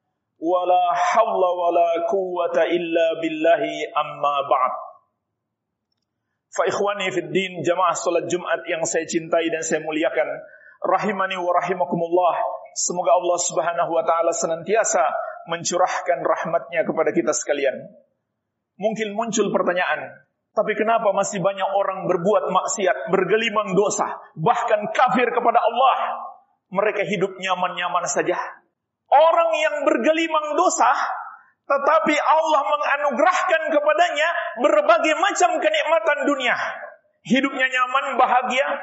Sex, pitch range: male, 175-290 Hz